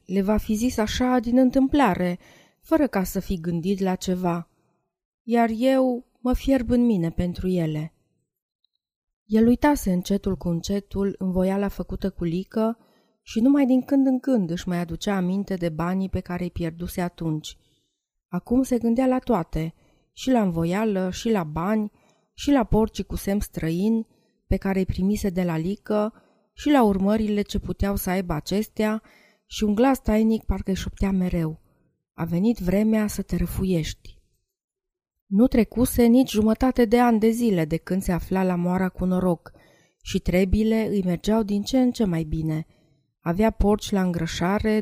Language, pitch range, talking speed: Romanian, 175-220 Hz, 165 wpm